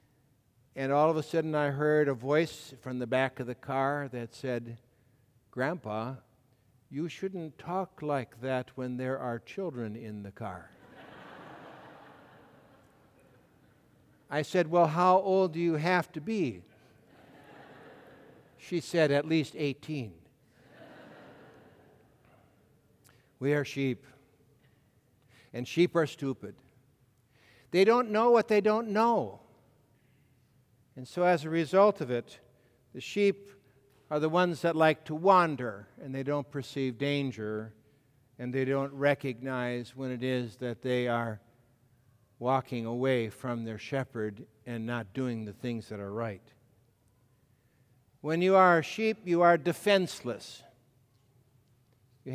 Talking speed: 130 wpm